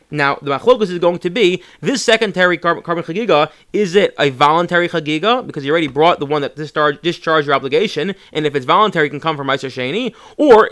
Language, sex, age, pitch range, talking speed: English, male, 30-49, 145-195 Hz, 225 wpm